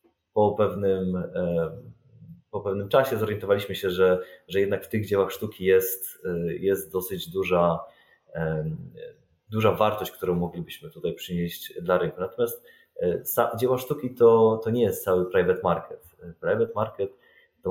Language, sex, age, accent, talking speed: Polish, male, 30-49, native, 130 wpm